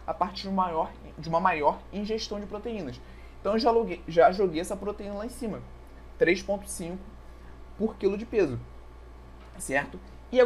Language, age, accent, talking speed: Portuguese, 20-39, Brazilian, 170 wpm